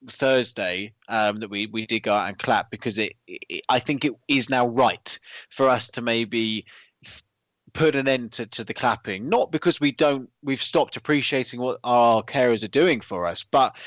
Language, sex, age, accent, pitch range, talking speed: English, male, 20-39, British, 100-125 Hz, 195 wpm